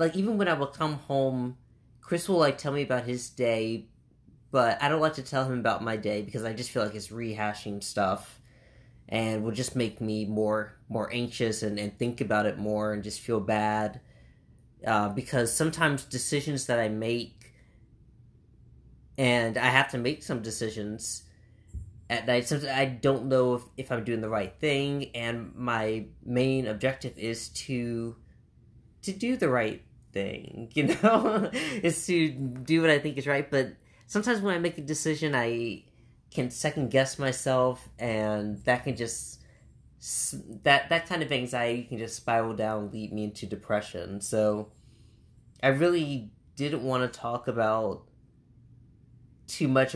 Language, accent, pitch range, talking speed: English, American, 110-135 Hz, 165 wpm